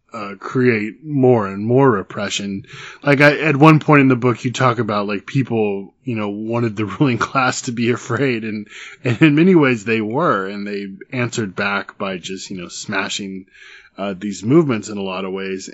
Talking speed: 200 wpm